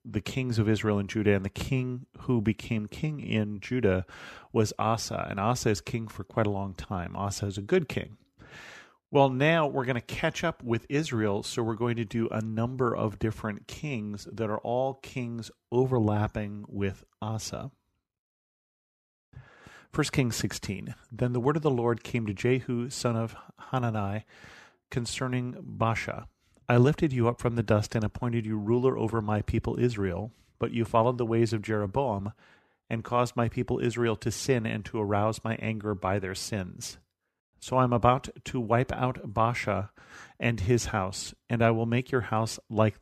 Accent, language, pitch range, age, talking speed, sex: American, English, 105-125 Hz, 40-59, 175 wpm, male